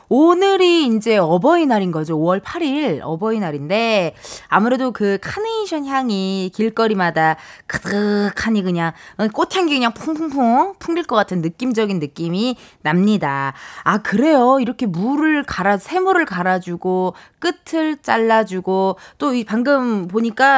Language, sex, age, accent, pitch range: Korean, female, 20-39, native, 185-300 Hz